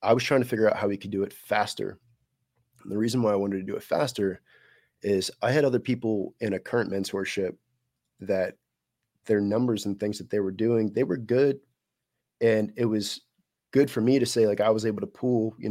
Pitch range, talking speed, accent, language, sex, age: 100-120 Hz, 220 wpm, American, English, male, 20-39